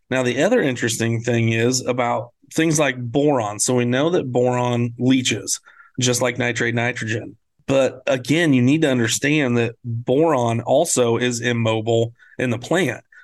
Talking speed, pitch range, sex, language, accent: 155 wpm, 120-135 Hz, male, English, American